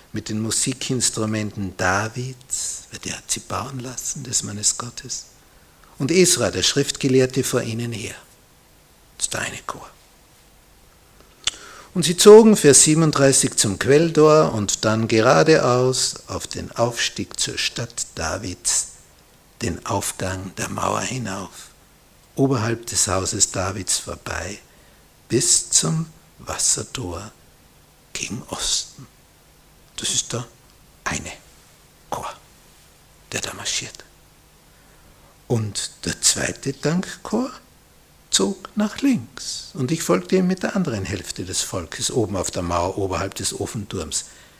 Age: 60-79